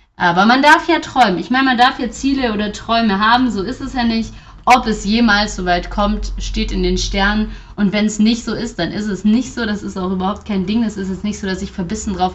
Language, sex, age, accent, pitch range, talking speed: German, female, 30-49, German, 180-225 Hz, 270 wpm